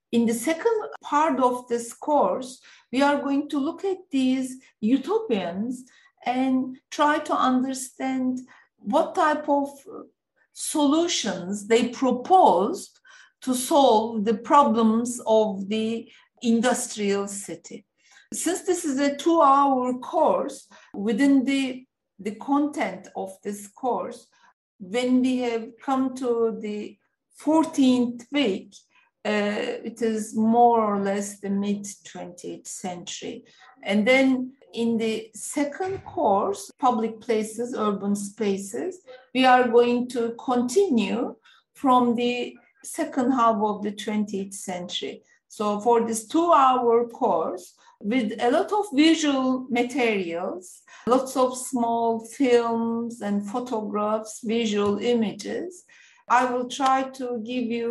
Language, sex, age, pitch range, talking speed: Turkish, female, 50-69, 220-270 Hz, 115 wpm